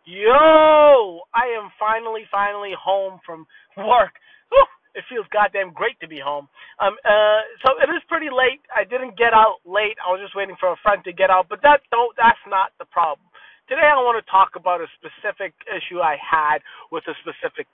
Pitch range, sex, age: 185-290 Hz, male, 30-49